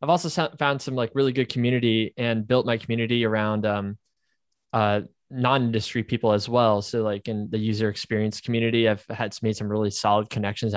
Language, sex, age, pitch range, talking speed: English, male, 20-39, 105-120 Hz, 185 wpm